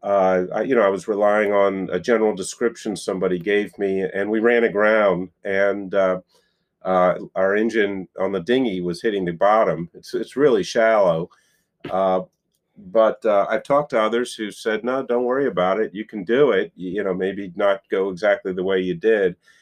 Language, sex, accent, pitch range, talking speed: English, male, American, 90-105 Hz, 190 wpm